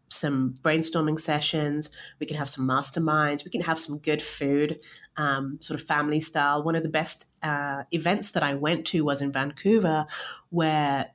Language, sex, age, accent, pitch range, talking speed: English, female, 30-49, British, 145-175 Hz, 180 wpm